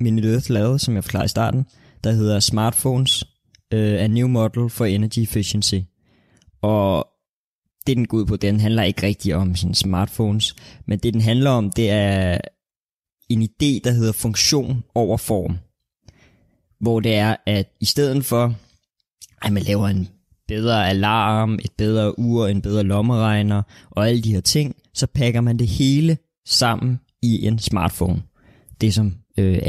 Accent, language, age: native, Danish, 20-39